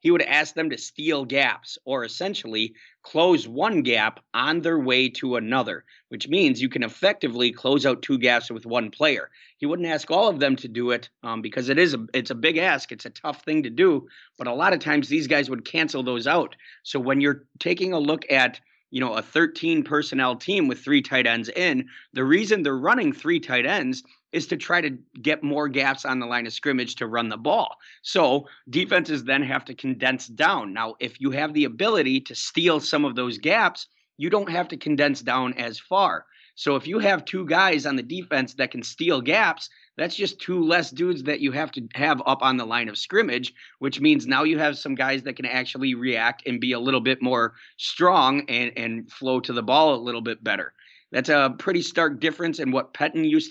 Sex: male